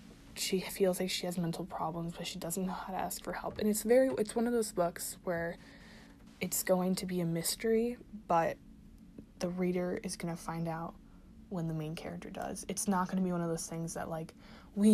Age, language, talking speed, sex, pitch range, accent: 20-39, English, 225 wpm, female, 175-210 Hz, American